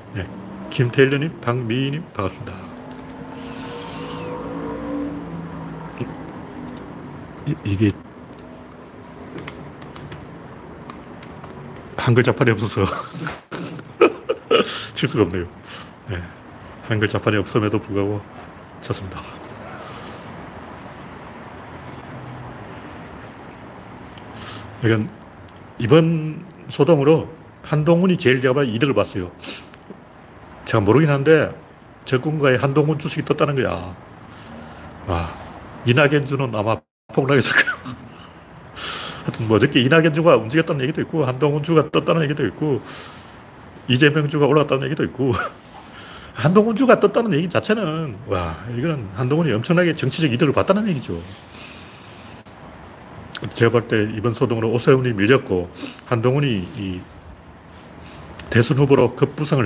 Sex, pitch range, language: male, 100-150 Hz, Korean